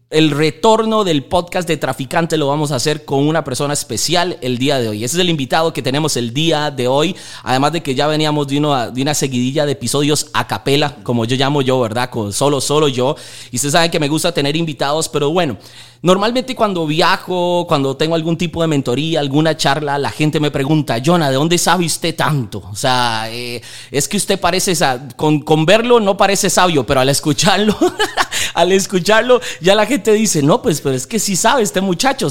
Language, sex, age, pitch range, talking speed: Spanish, male, 30-49, 140-175 Hz, 210 wpm